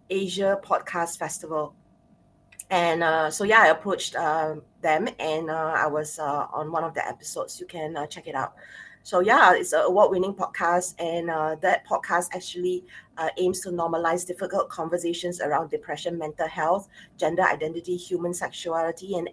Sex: female